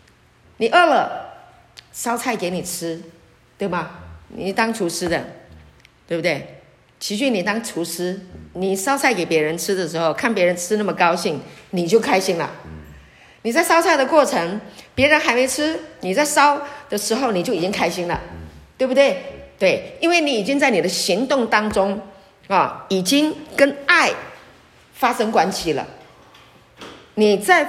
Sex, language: female, Chinese